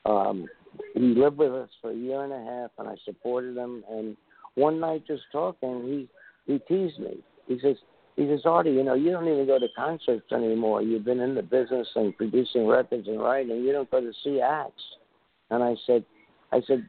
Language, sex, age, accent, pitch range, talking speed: English, male, 60-79, American, 115-140 Hz, 210 wpm